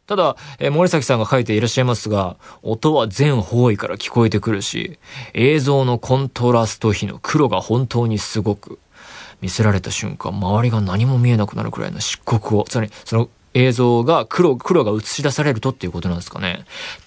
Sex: male